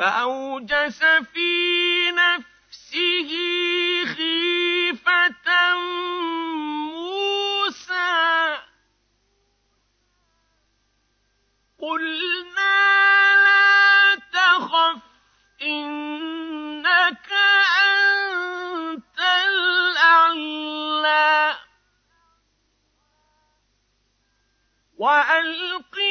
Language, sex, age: Arabic, male, 50-69